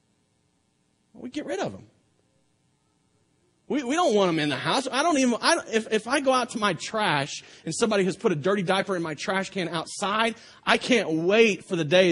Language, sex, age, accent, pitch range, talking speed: English, male, 30-49, American, 175-255 Hz, 220 wpm